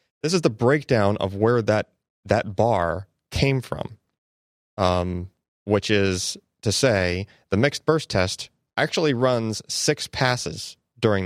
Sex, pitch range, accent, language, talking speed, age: male, 90-125 Hz, American, English, 135 wpm, 30-49